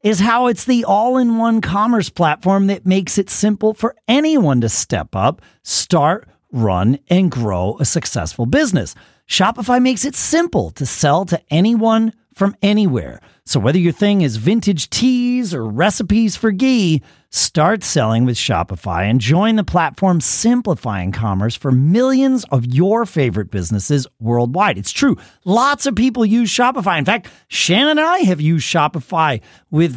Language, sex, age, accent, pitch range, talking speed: English, male, 40-59, American, 150-225 Hz, 155 wpm